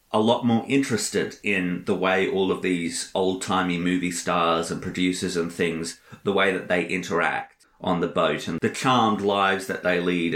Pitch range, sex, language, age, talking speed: 90-120 Hz, male, English, 30-49, 185 wpm